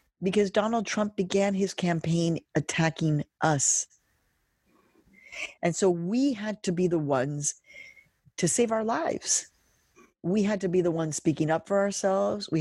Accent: American